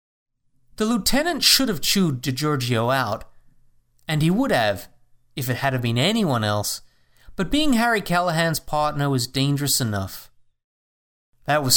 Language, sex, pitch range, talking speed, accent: English, male, 120-155 Hz, 140 wpm, American